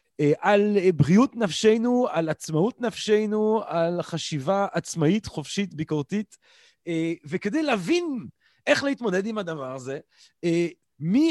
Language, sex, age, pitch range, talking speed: Hebrew, male, 30-49, 160-215 Hz, 100 wpm